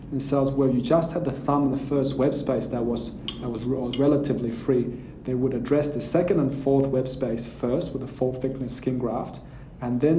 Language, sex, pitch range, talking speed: English, male, 125-140 Hz, 230 wpm